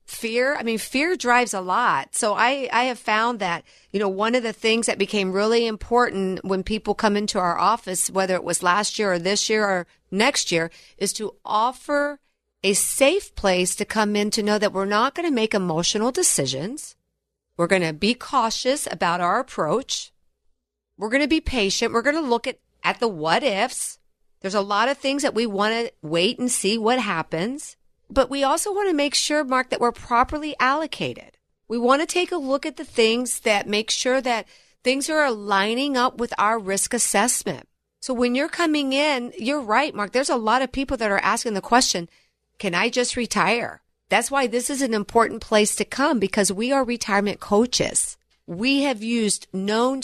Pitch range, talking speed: 200-260 Hz, 200 wpm